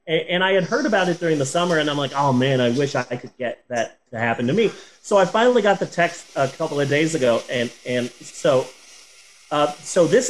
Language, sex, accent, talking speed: English, male, American, 240 wpm